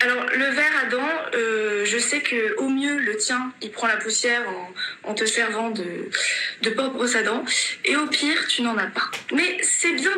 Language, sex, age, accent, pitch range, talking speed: French, female, 20-39, French, 220-280 Hz, 210 wpm